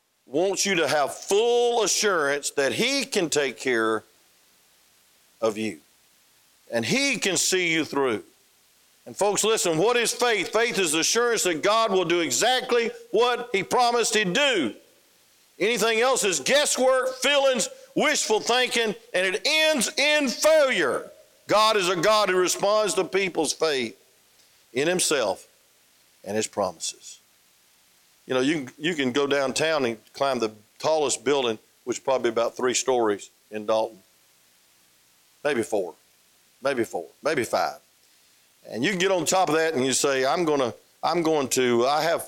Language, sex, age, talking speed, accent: English, male, 50-69, 155 wpm, American